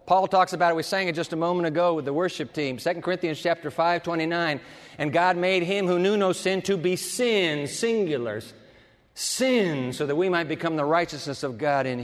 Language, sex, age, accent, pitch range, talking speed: English, male, 50-69, American, 155-210 Hz, 220 wpm